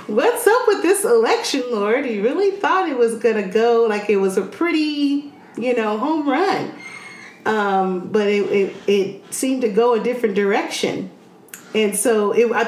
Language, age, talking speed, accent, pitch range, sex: English, 40-59, 175 wpm, American, 205-305 Hz, female